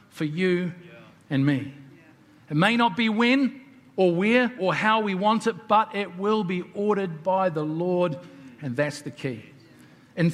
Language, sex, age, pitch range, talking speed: English, male, 50-69, 145-205 Hz, 170 wpm